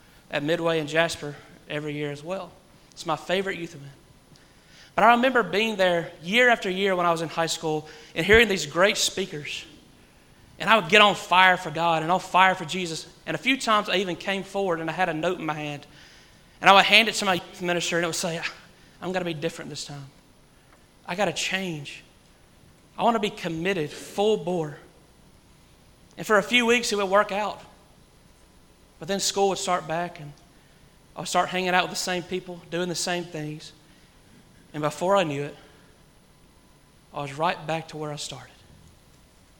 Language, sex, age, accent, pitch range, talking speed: English, male, 30-49, American, 155-195 Hz, 200 wpm